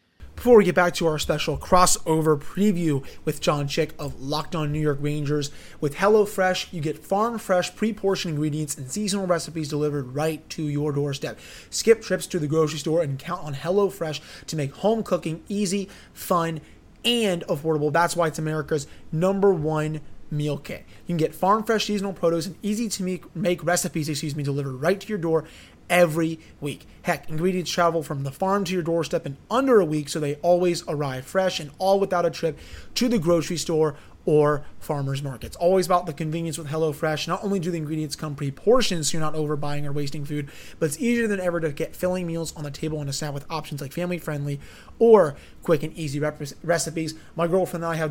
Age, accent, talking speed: 30-49, American, 200 wpm